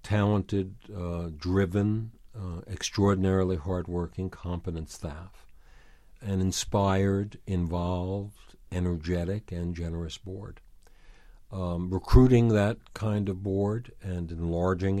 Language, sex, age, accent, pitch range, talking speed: English, male, 60-79, American, 85-100 Hz, 90 wpm